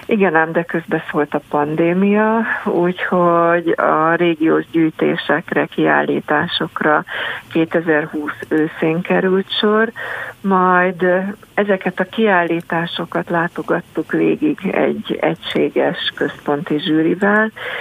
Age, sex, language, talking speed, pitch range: 50-69, female, Hungarian, 90 wpm, 155-185 Hz